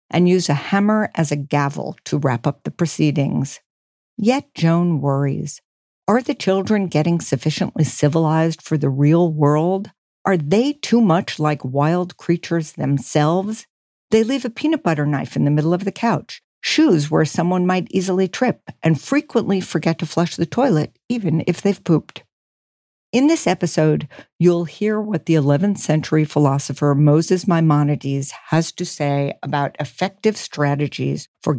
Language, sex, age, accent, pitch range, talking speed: English, female, 60-79, American, 150-195 Hz, 155 wpm